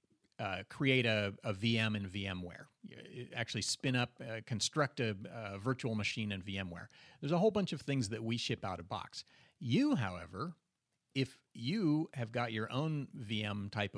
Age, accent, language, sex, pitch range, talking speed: 40-59, American, English, male, 110-135 Hz, 170 wpm